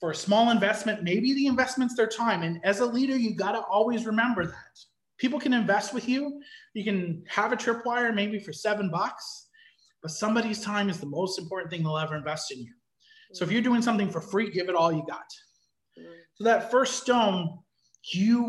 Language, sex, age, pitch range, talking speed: English, male, 30-49, 170-220 Hz, 205 wpm